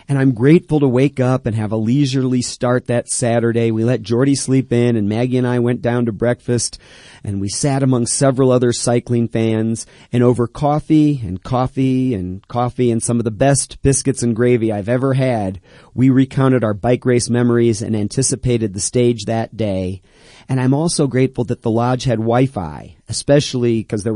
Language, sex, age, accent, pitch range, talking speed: English, male, 40-59, American, 110-130 Hz, 190 wpm